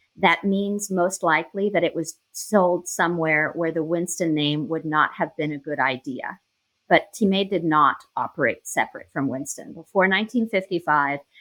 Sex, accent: female, American